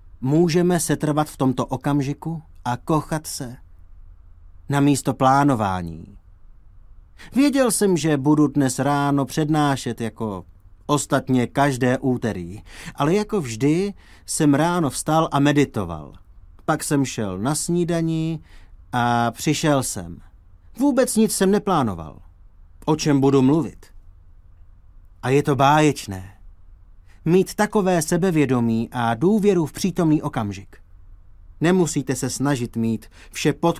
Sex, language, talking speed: male, Czech, 115 wpm